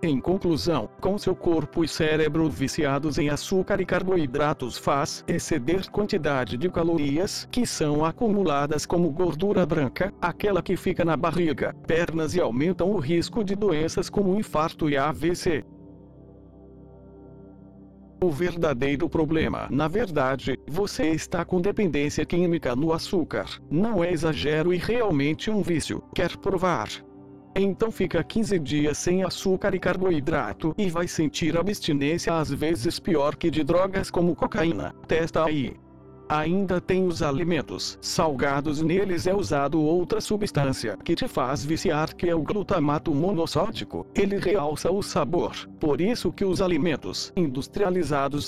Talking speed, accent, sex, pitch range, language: 135 wpm, Brazilian, male, 145-185 Hz, Portuguese